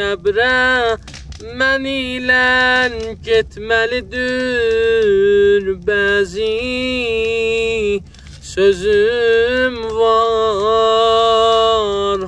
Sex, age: male, 30-49